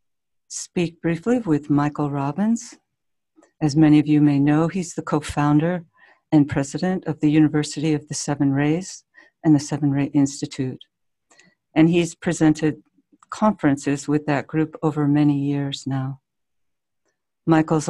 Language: English